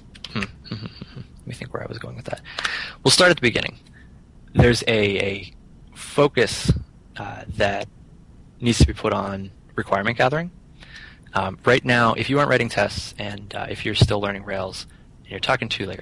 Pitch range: 100-120 Hz